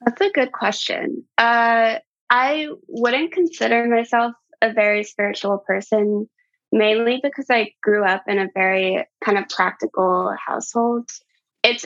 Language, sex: English, female